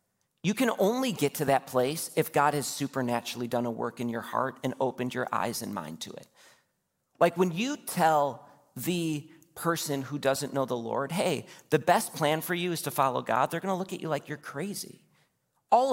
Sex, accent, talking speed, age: male, American, 205 wpm, 40-59